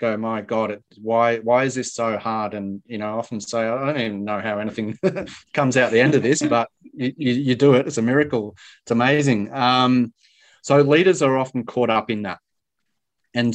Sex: male